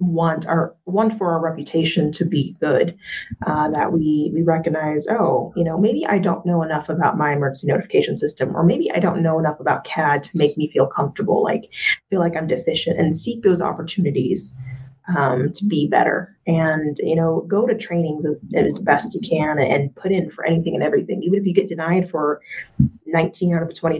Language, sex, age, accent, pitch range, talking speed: English, female, 30-49, American, 155-185 Hz, 205 wpm